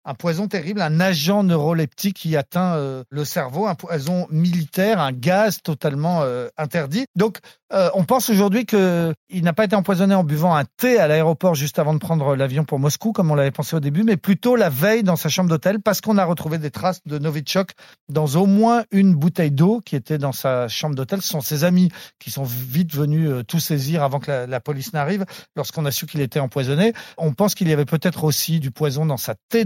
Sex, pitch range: male, 145-185 Hz